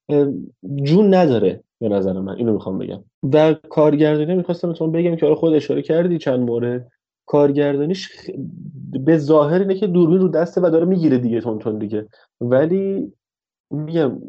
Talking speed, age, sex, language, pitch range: 145 wpm, 30-49, male, Persian, 115-155 Hz